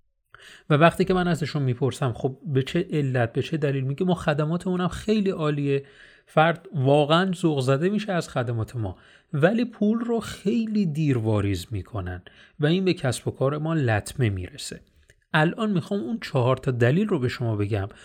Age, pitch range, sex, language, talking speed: 30-49, 120-175 Hz, male, Persian, 170 wpm